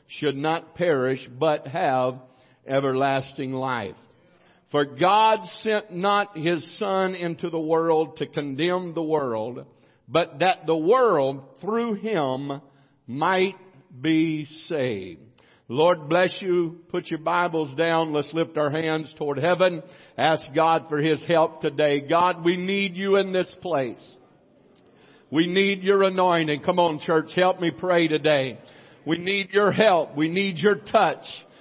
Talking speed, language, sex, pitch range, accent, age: 140 wpm, English, male, 155-195 Hz, American, 50-69